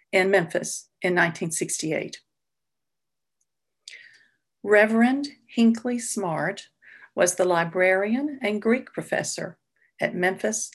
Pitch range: 180-215 Hz